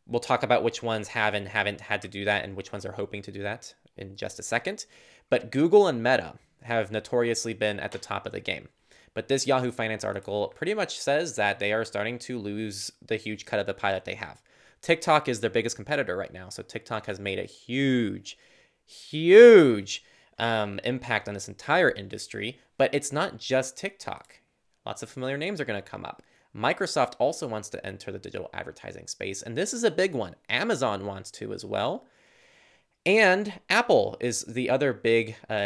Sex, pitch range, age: male, 100-125 Hz, 20-39